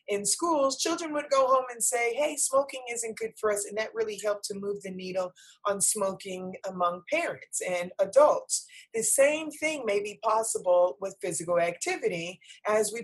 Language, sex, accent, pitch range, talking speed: English, female, American, 185-265 Hz, 180 wpm